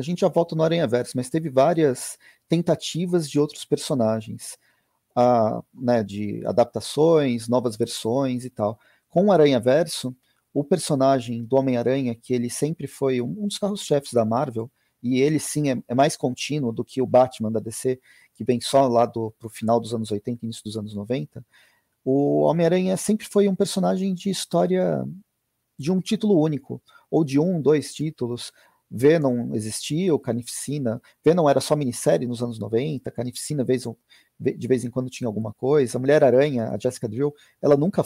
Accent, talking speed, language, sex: Brazilian, 165 wpm, Portuguese, male